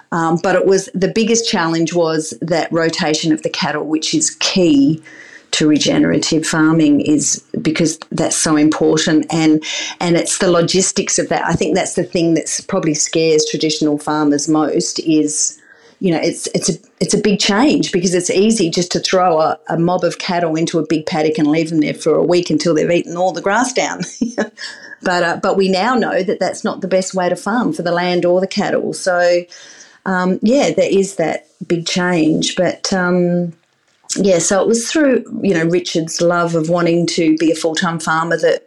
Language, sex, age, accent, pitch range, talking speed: English, female, 40-59, Australian, 160-190 Hz, 200 wpm